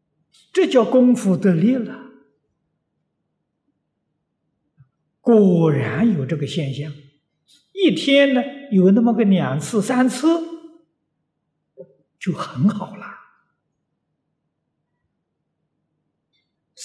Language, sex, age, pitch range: Chinese, male, 60-79, 140-225 Hz